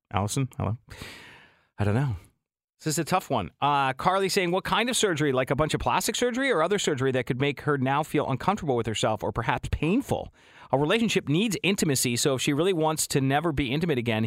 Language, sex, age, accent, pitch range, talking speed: English, male, 40-59, American, 125-175 Hz, 220 wpm